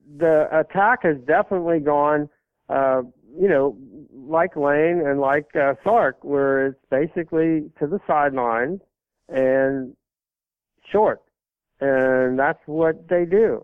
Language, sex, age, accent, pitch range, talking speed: English, male, 60-79, American, 130-160 Hz, 120 wpm